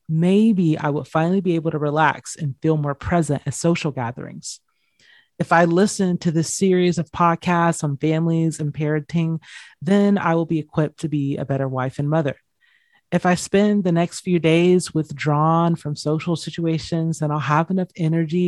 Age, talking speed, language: 30-49, 180 wpm, English